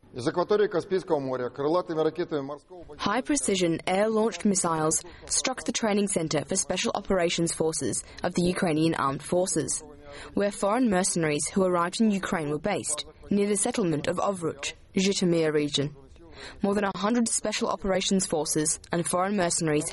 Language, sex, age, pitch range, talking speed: Bulgarian, female, 20-39, 165-205 Hz, 125 wpm